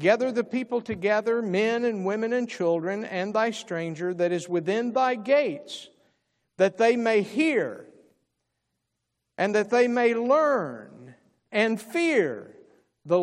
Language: English